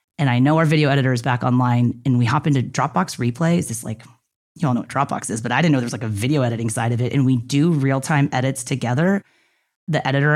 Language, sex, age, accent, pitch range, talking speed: English, female, 30-49, American, 130-185 Hz, 255 wpm